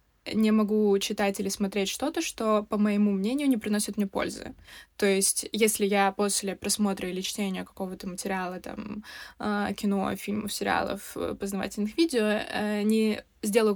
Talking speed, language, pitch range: 140 wpm, Russian, 195-220 Hz